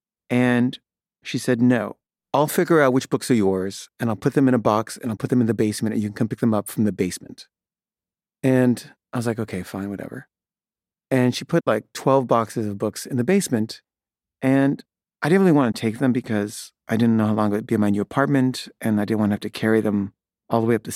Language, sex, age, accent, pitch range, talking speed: English, male, 30-49, American, 110-130 Hz, 250 wpm